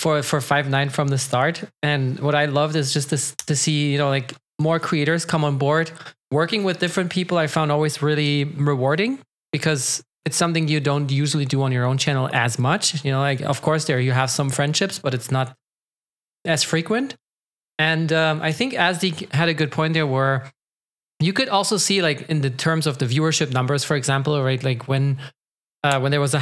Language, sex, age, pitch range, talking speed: English, male, 20-39, 135-160 Hz, 215 wpm